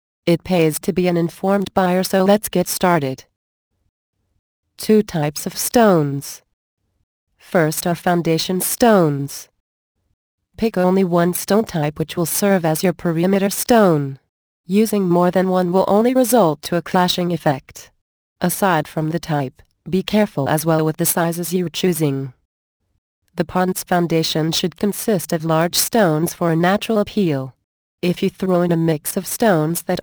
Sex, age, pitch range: female, 30-49, 155-195 Hz